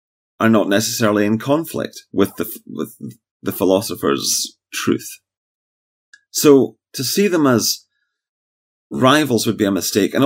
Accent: British